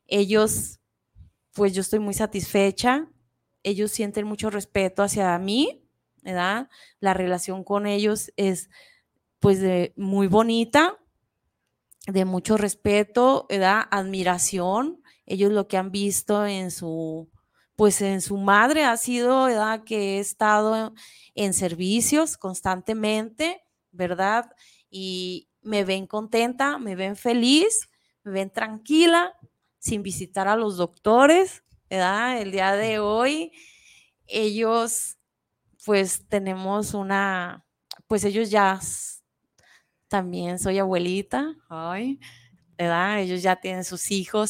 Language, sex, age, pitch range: Spanish, female, 20-39, 185-220 Hz